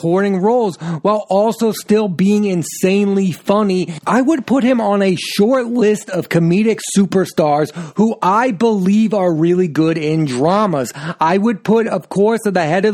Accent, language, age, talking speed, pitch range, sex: American, English, 30-49, 160 wpm, 170-205 Hz, male